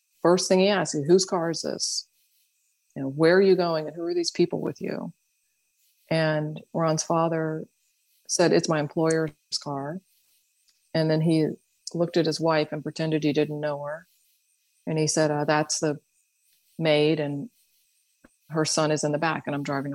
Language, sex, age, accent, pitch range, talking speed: English, female, 40-59, American, 155-215 Hz, 180 wpm